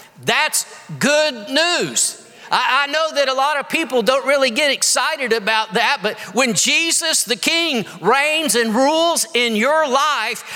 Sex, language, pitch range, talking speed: male, English, 230-305 Hz, 160 wpm